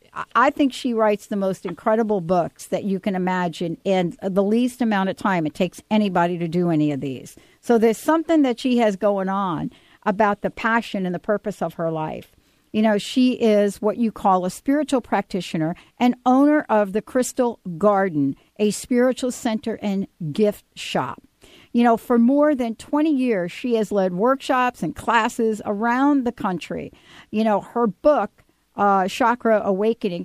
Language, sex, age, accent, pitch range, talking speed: English, female, 50-69, American, 195-250 Hz, 175 wpm